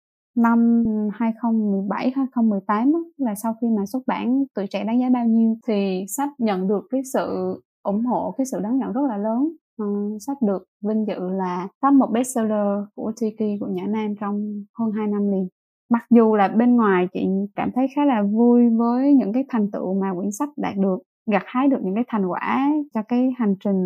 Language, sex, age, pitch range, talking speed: Vietnamese, female, 20-39, 200-260 Hz, 200 wpm